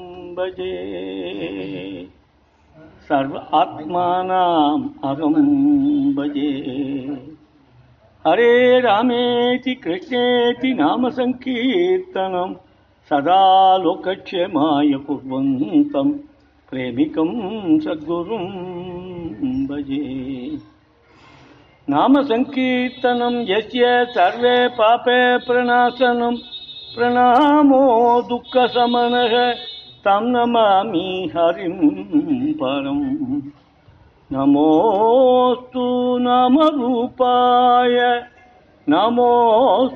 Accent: native